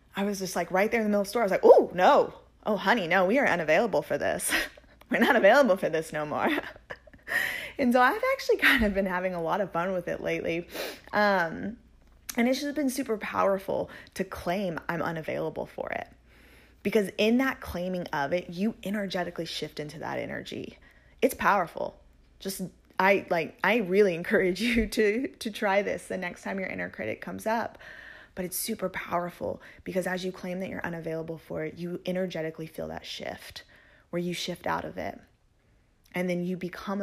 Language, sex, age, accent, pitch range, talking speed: English, female, 20-39, American, 160-205 Hz, 195 wpm